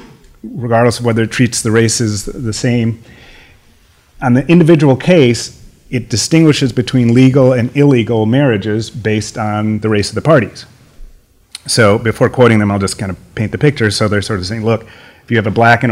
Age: 30-49